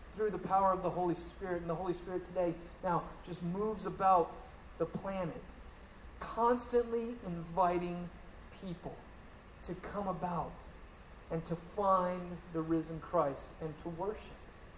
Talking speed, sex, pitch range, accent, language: 135 wpm, male, 140-190 Hz, American, English